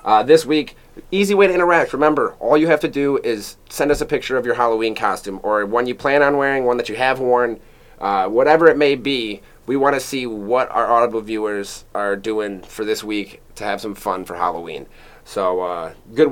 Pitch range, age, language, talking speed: 110-130 Hz, 30-49, English, 220 wpm